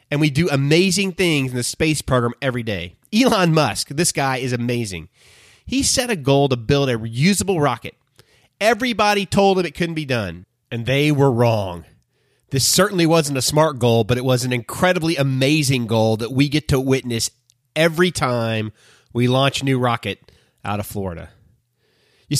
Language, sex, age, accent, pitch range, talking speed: English, male, 30-49, American, 120-165 Hz, 175 wpm